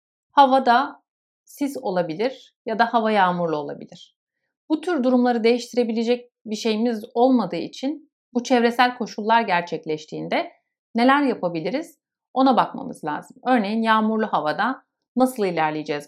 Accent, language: native, Turkish